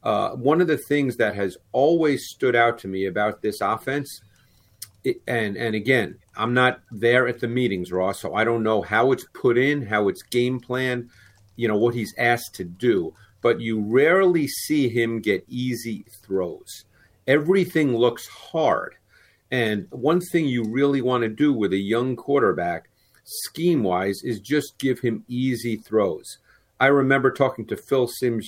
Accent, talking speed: American, 170 wpm